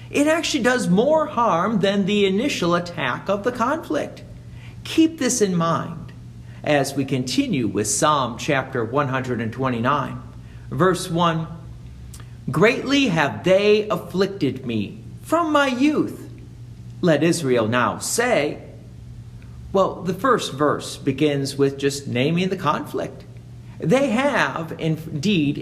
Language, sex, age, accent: English, male, 50-69, American